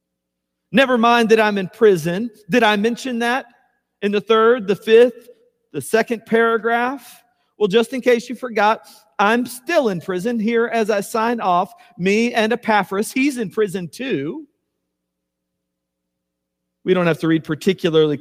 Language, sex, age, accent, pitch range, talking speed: English, male, 50-69, American, 125-210 Hz, 150 wpm